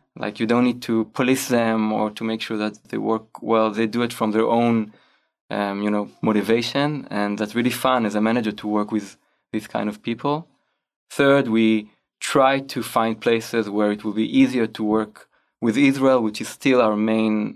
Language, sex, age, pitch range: Chinese, male, 20-39, 105-120 Hz